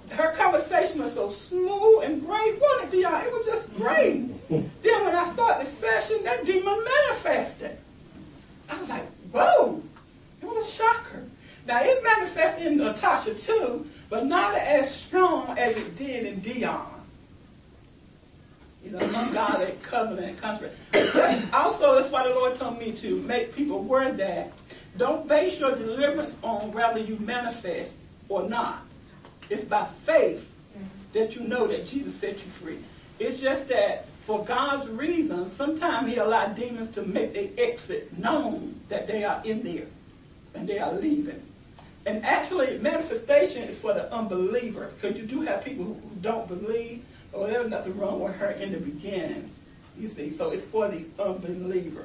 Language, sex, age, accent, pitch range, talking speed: English, female, 60-79, American, 215-315 Hz, 165 wpm